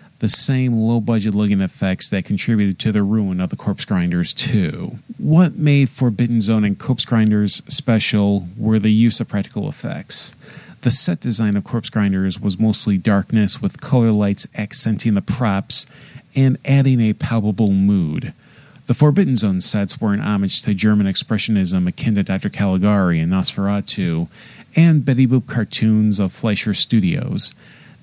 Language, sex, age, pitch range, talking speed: English, male, 40-59, 105-130 Hz, 150 wpm